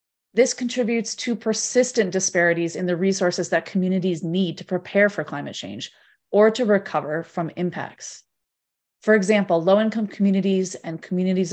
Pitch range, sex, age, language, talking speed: 170-210 Hz, female, 30-49, English, 140 wpm